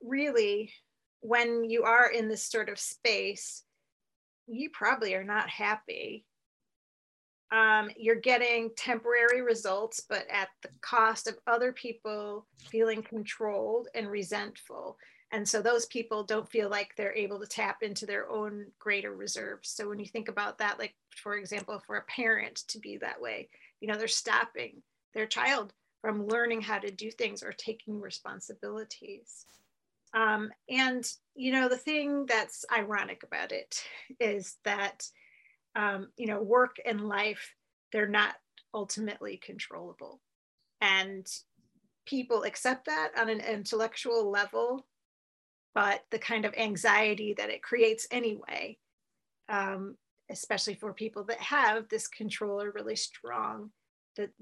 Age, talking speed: 40-59, 140 wpm